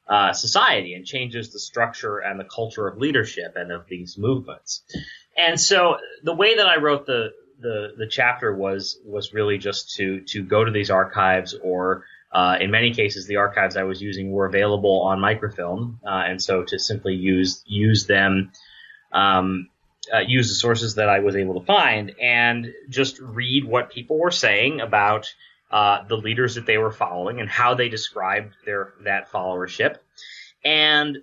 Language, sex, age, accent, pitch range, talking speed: English, male, 30-49, American, 95-130 Hz, 175 wpm